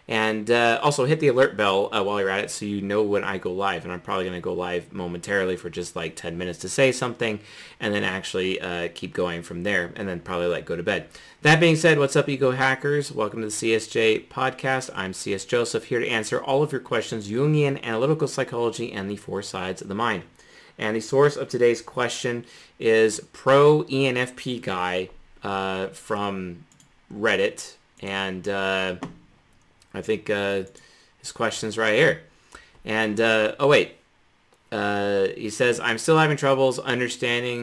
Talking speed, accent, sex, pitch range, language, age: 180 wpm, American, male, 100-150 Hz, English, 30-49